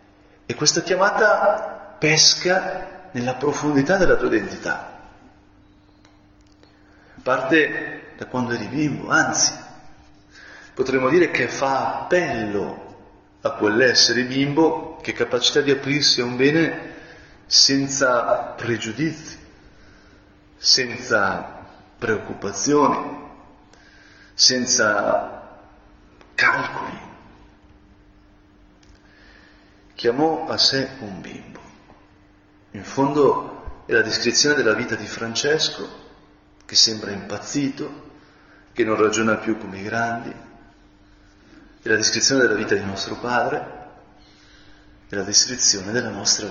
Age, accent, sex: 40-59, native, male